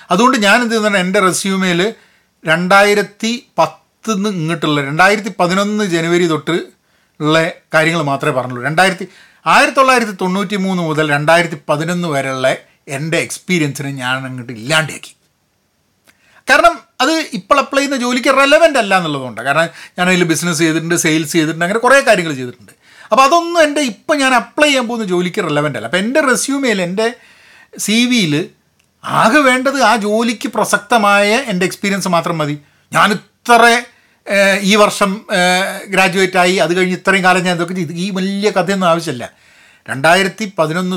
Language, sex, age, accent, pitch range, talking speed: Malayalam, male, 40-59, native, 160-225 Hz, 130 wpm